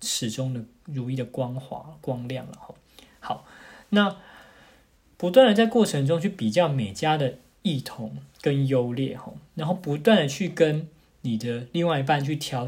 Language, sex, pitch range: Chinese, male, 120-150 Hz